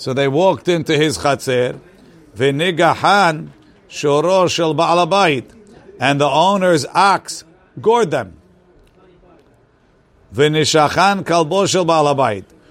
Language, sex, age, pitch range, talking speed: English, male, 50-69, 145-195 Hz, 90 wpm